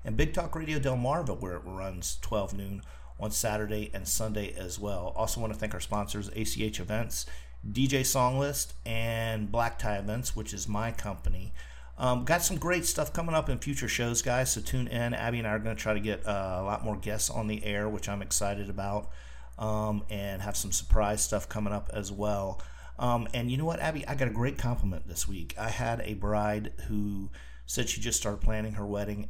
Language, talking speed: English, 215 wpm